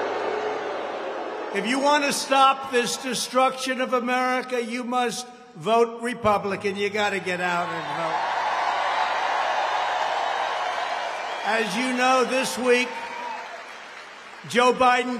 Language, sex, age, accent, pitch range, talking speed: English, male, 60-79, American, 220-260 Hz, 105 wpm